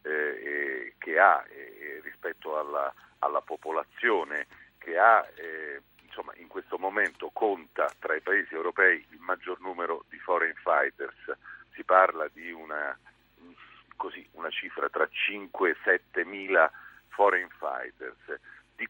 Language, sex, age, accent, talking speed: Italian, male, 50-69, native, 125 wpm